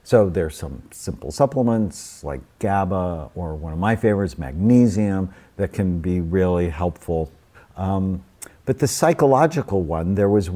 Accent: American